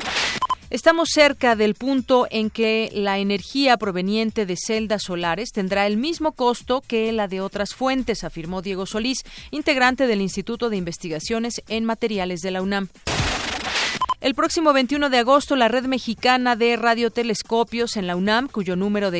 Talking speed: 155 wpm